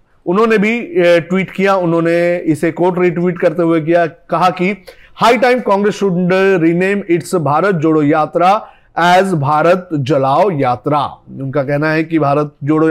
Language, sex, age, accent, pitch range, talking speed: Hindi, male, 30-49, native, 155-190 Hz, 145 wpm